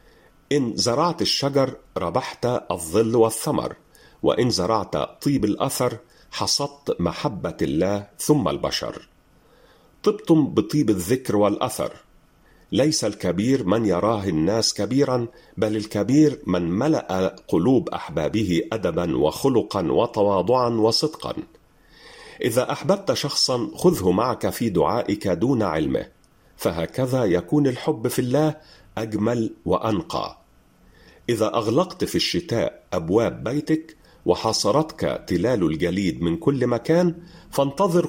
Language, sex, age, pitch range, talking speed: Arabic, male, 40-59, 105-150 Hz, 100 wpm